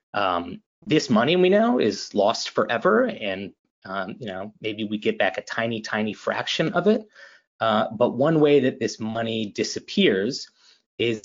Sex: male